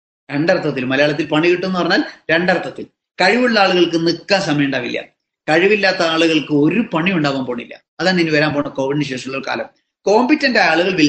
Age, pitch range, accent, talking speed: 20-39, 150-240 Hz, native, 155 wpm